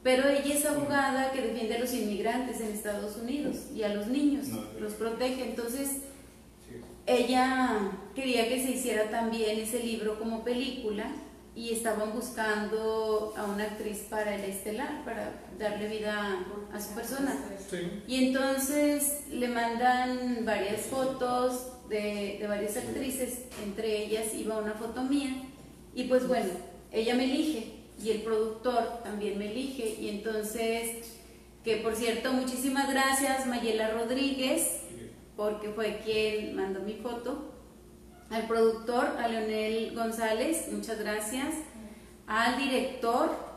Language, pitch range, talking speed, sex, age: Spanish, 215-255 Hz, 130 wpm, female, 30-49